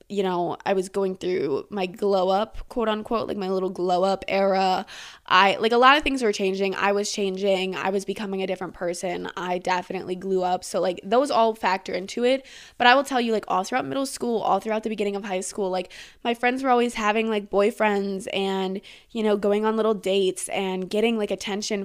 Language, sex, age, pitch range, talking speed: English, female, 20-39, 190-225 Hz, 220 wpm